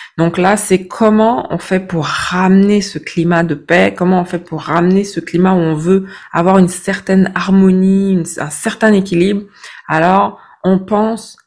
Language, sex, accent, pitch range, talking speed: French, female, French, 175-200 Hz, 165 wpm